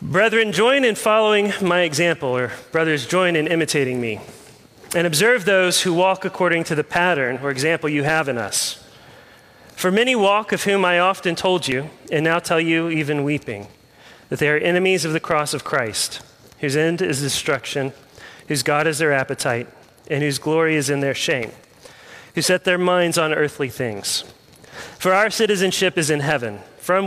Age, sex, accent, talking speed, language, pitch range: 30-49, male, American, 180 wpm, English, 135-175 Hz